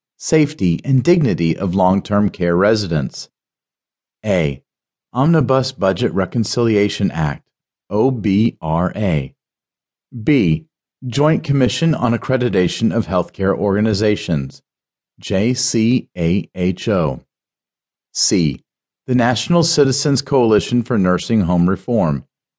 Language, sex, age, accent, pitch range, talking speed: English, male, 40-59, American, 100-135 Hz, 85 wpm